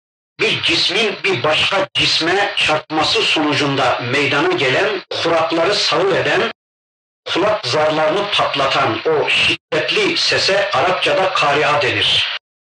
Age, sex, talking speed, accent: 60-79, male, 100 wpm, native